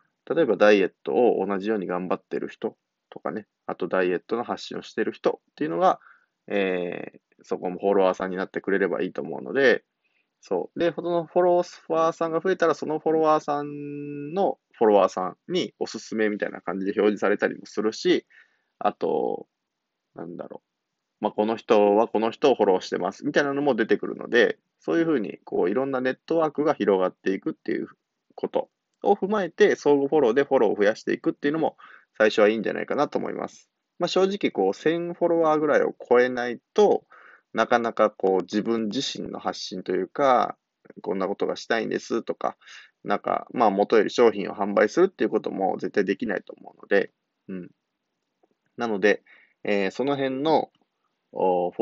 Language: Japanese